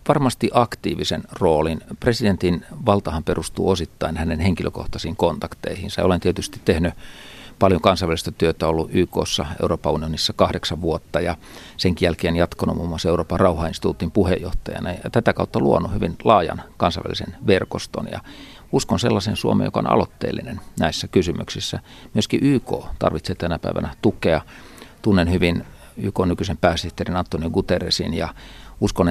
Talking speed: 130 wpm